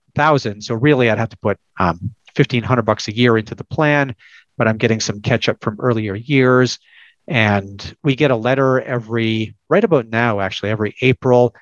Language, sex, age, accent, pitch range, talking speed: English, male, 40-59, American, 110-130 Hz, 185 wpm